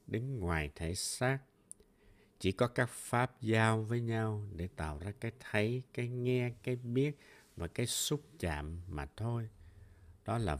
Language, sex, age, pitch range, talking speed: Vietnamese, male, 60-79, 90-120 Hz, 160 wpm